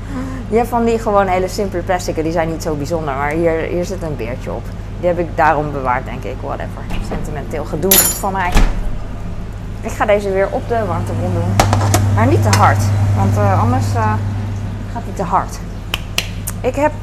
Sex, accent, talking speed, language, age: female, Dutch, 185 wpm, Dutch, 20-39